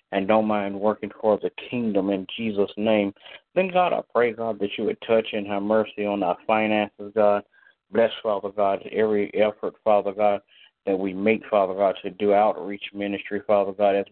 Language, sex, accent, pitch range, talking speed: English, male, American, 100-110 Hz, 190 wpm